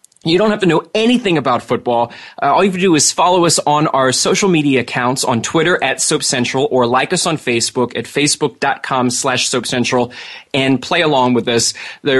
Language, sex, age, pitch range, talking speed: English, male, 30-49, 130-165 Hz, 200 wpm